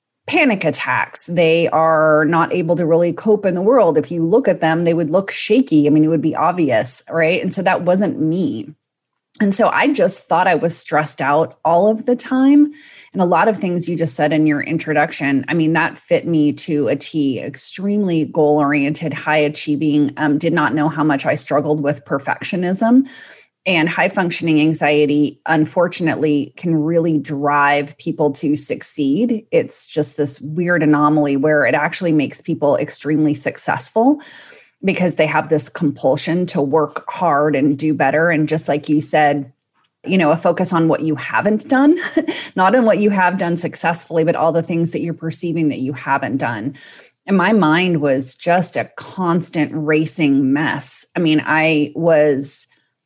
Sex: female